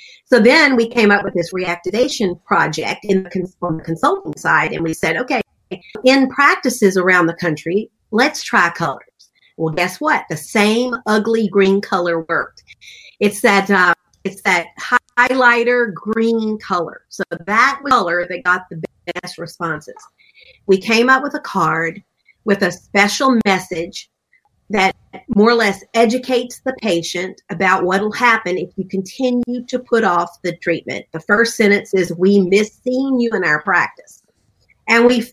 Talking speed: 155 wpm